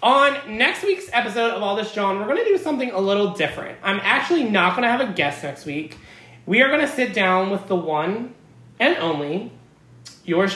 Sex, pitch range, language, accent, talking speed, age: male, 155-225 Hz, English, American, 215 wpm, 20-39